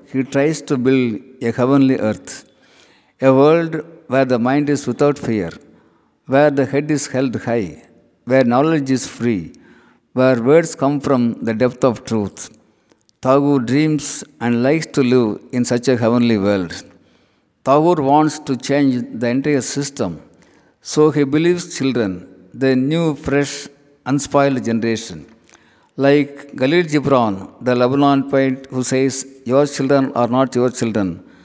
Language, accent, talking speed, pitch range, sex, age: Tamil, native, 140 wpm, 120-145 Hz, male, 60-79